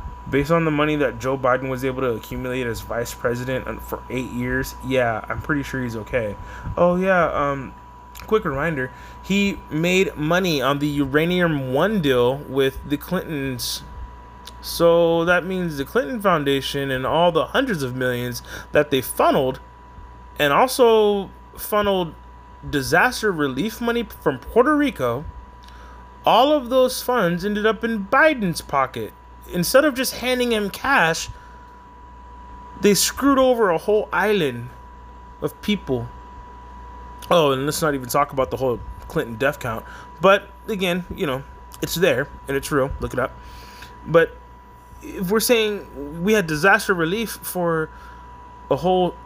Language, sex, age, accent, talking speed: English, male, 20-39, American, 145 wpm